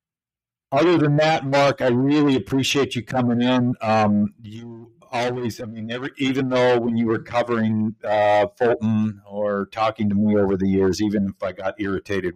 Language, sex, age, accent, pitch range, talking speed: English, male, 50-69, American, 100-125 Hz, 175 wpm